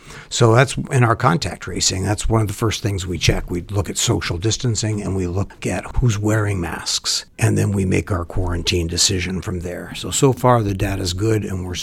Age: 60-79